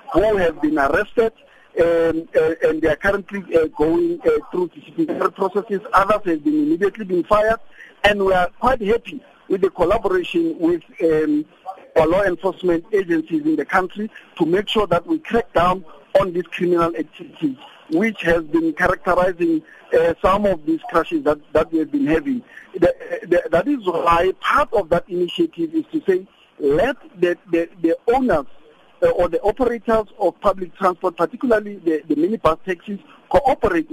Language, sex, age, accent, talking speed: English, male, 50-69, South African, 170 wpm